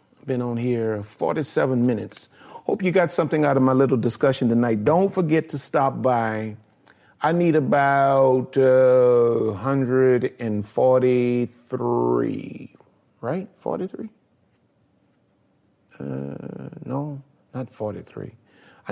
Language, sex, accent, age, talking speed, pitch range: English, male, American, 40-59, 100 wpm, 115-145 Hz